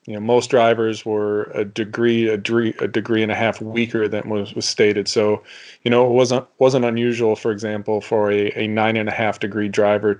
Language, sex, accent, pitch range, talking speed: English, male, American, 105-120 Hz, 220 wpm